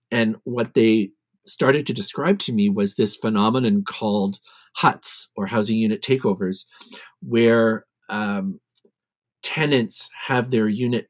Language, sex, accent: English, male, American